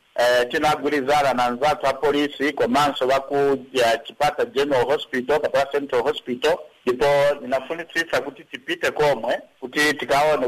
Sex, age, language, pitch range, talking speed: male, 60-79, English, 135-165 Hz, 145 wpm